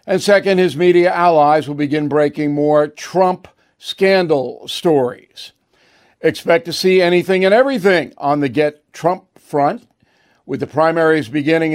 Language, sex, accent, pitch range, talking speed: English, male, American, 150-185 Hz, 140 wpm